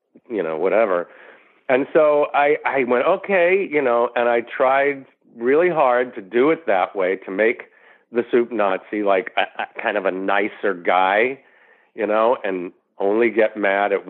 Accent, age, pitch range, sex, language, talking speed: American, 50-69, 100-130 Hz, male, English, 165 wpm